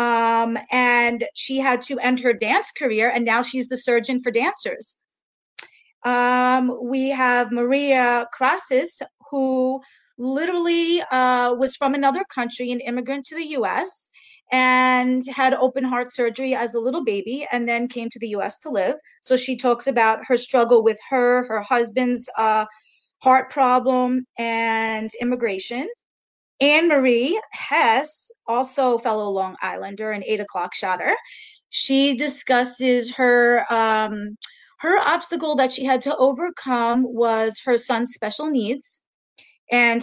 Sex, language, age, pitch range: female, English, 30-49, 235-270 Hz